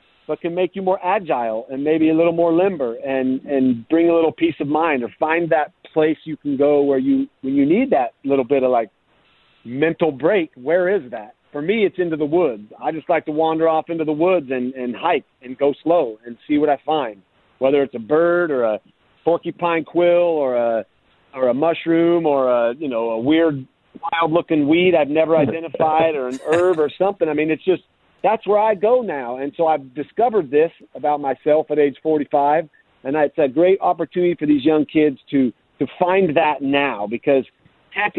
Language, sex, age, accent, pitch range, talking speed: English, male, 40-59, American, 130-165 Hz, 210 wpm